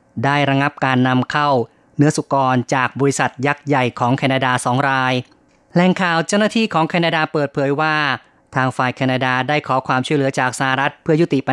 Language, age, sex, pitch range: Thai, 20-39, female, 130-150 Hz